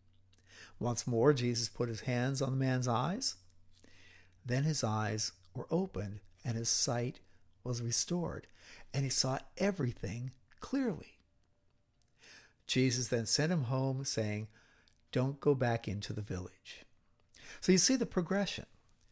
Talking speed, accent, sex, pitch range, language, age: 130 wpm, American, male, 115-150 Hz, English, 60-79